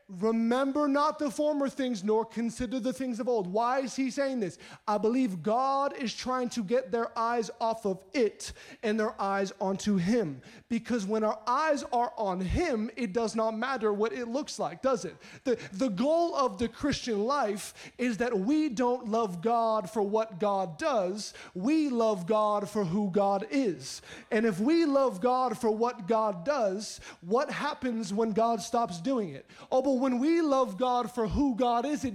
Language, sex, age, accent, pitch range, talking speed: English, male, 30-49, American, 215-270 Hz, 190 wpm